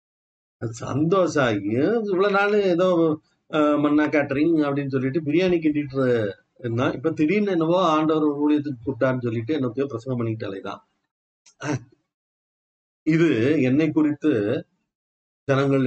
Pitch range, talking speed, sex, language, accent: 120-180 Hz, 100 wpm, male, Tamil, native